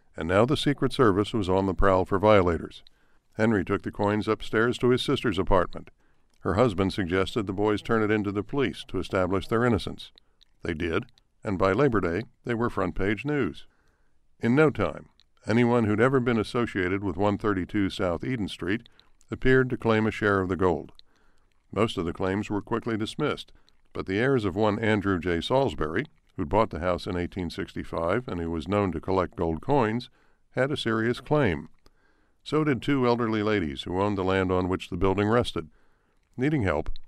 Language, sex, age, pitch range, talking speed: English, male, 60-79, 95-115 Hz, 185 wpm